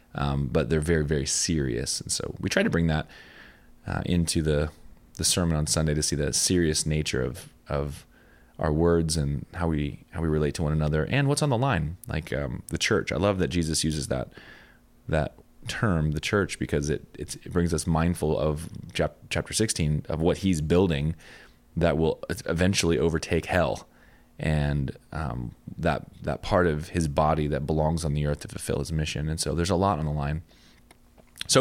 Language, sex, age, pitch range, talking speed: English, male, 20-39, 75-90 Hz, 195 wpm